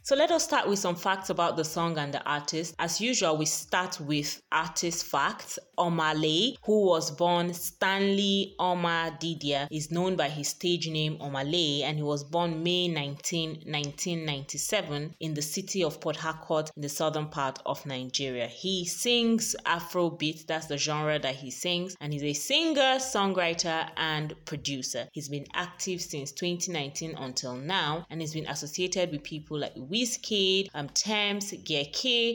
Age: 20-39